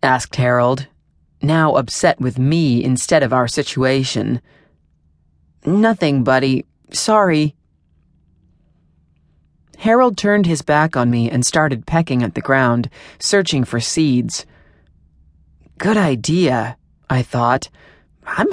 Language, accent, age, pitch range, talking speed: English, American, 30-49, 115-160 Hz, 105 wpm